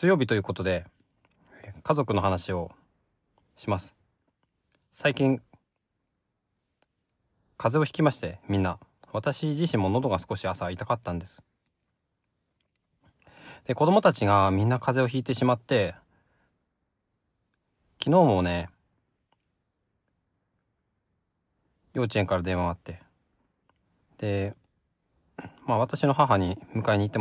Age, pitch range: 20-39, 90-125 Hz